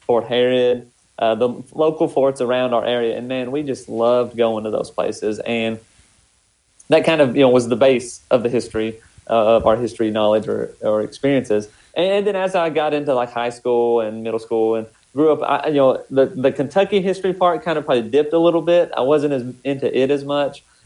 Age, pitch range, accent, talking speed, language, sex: 30-49, 115-140 Hz, American, 215 wpm, English, male